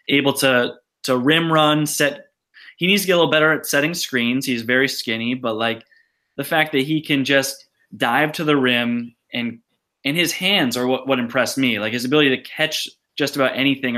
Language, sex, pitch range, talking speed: English, male, 120-150 Hz, 205 wpm